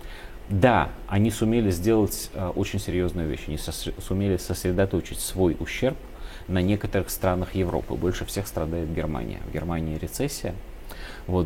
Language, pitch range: Russian, 85-100 Hz